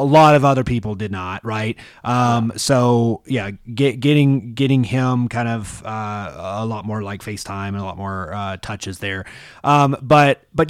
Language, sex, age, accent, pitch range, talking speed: English, male, 30-49, American, 100-135 Hz, 185 wpm